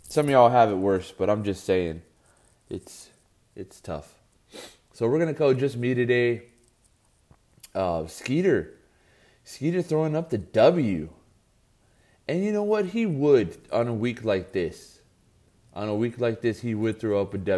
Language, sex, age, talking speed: English, male, 20-39, 165 wpm